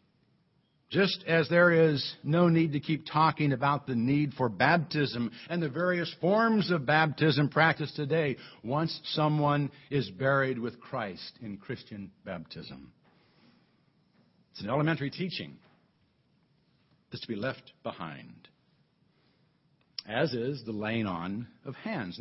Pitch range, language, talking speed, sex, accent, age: 140-195 Hz, English, 125 wpm, male, American, 60-79